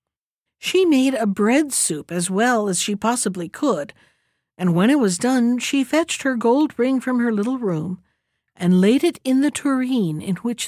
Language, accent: English, American